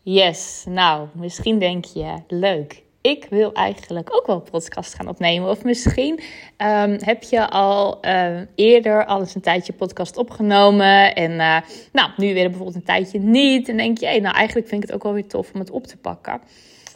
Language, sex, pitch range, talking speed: Dutch, female, 185-230 Hz, 200 wpm